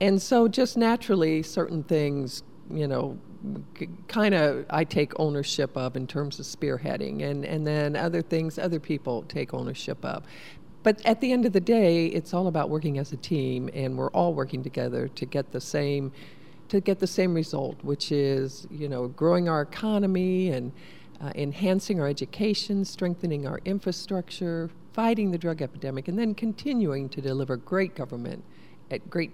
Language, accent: English, American